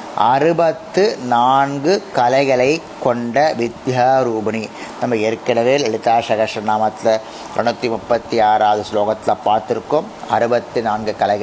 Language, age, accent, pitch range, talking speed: Tamil, 30-49, native, 115-165 Hz, 75 wpm